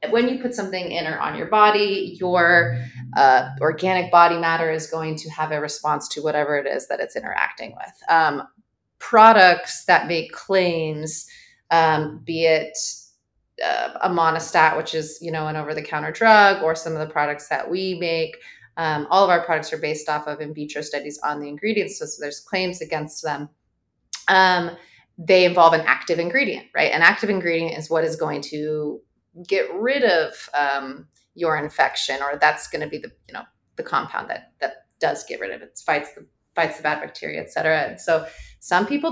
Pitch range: 155-185 Hz